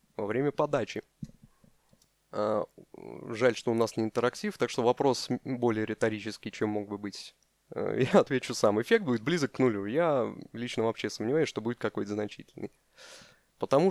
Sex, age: male, 20-39